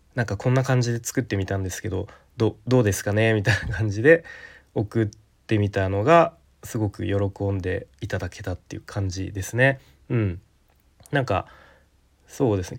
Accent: native